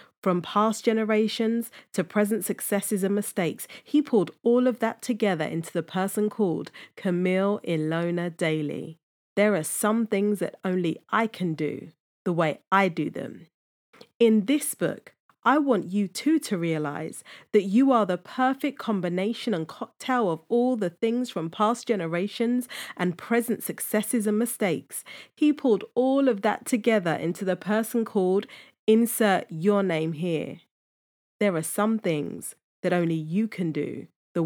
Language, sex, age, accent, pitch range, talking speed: English, female, 40-59, British, 165-215 Hz, 155 wpm